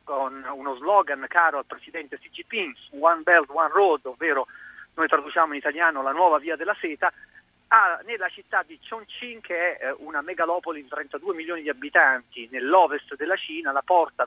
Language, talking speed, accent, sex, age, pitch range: Italian, 170 wpm, native, male, 40-59, 145-220 Hz